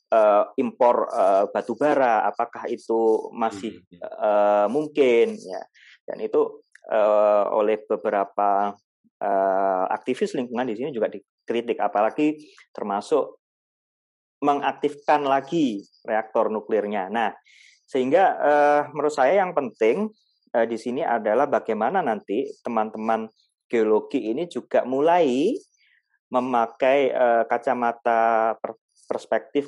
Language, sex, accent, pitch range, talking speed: Indonesian, male, native, 105-145 Hz, 85 wpm